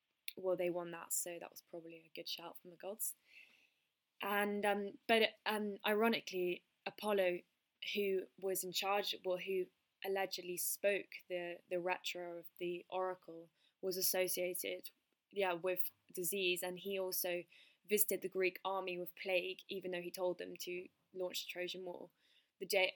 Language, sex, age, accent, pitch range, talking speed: English, female, 10-29, British, 180-200 Hz, 155 wpm